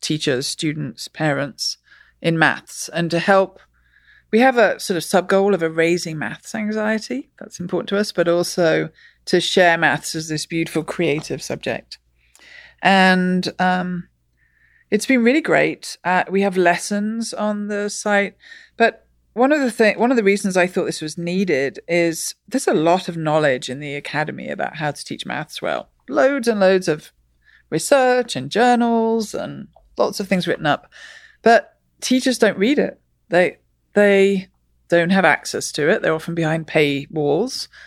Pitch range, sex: 160-210 Hz, female